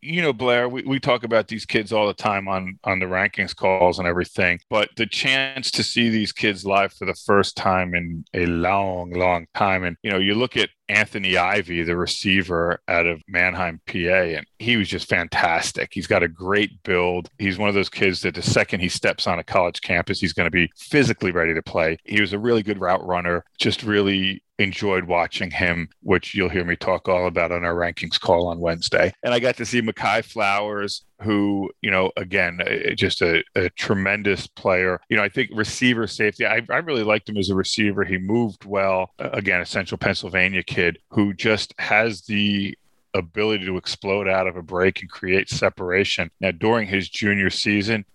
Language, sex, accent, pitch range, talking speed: English, male, American, 90-105 Hz, 205 wpm